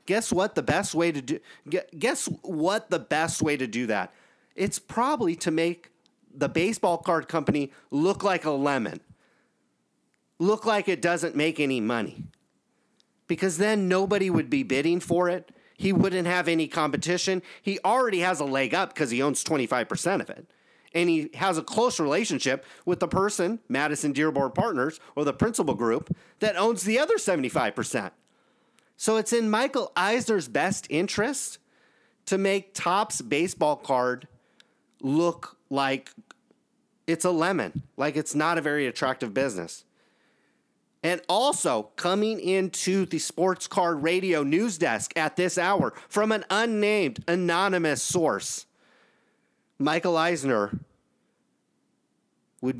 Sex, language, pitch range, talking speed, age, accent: male, English, 150-195 Hz, 140 wpm, 40-59, American